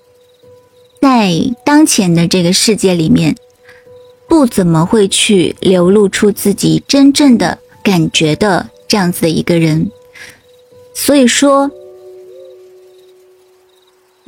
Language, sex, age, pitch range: Chinese, female, 30-49, 185-255 Hz